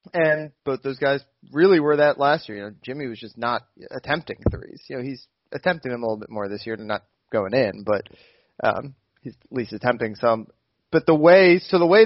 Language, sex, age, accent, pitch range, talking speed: English, male, 30-49, American, 125-155 Hz, 230 wpm